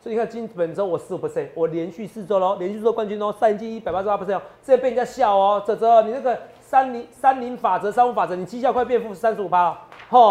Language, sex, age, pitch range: Chinese, male, 30-49, 155-210 Hz